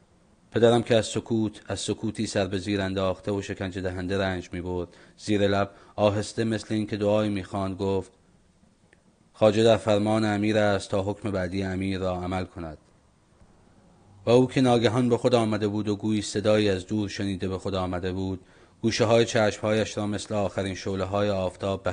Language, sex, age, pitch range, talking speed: Persian, male, 30-49, 95-110 Hz, 180 wpm